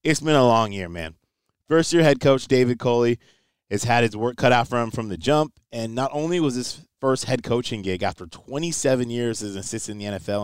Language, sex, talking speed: English, male, 230 wpm